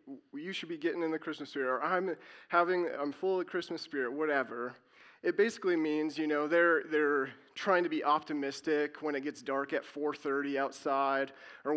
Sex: male